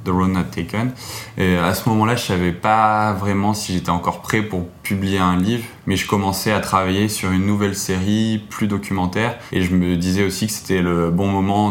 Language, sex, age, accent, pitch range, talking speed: French, male, 20-39, French, 90-100 Hz, 215 wpm